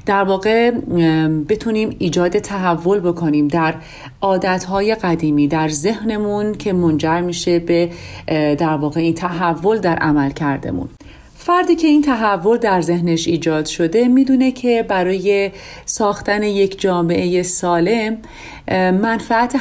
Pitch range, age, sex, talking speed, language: 160-210 Hz, 40-59, female, 115 wpm, Persian